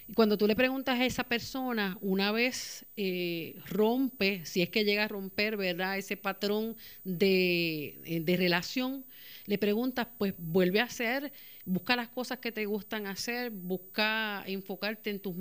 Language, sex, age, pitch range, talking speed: Spanish, female, 40-59, 195-245 Hz, 155 wpm